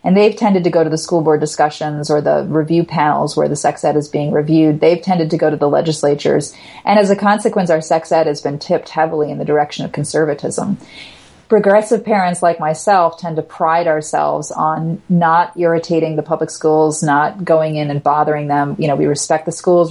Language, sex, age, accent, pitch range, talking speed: English, female, 30-49, American, 150-180 Hz, 210 wpm